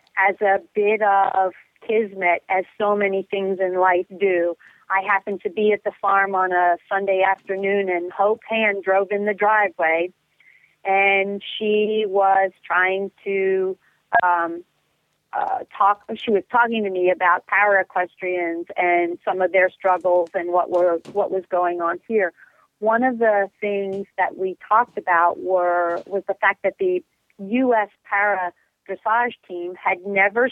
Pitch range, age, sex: 185-210 Hz, 40-59, female